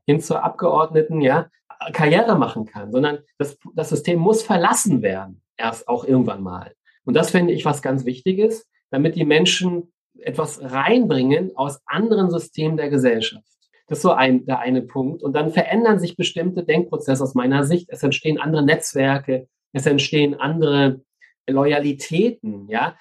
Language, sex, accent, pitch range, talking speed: German, male, German, 145-195 Hz, 155 wpm